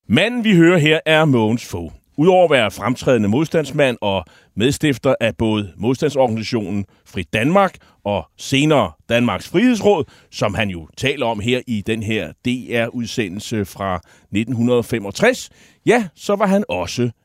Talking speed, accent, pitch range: 140 wpm, native, 110-165 Hz